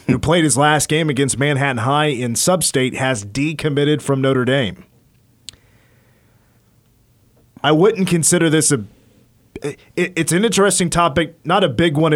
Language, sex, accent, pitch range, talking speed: English, male, American, 115-150 Hz, 145 wpm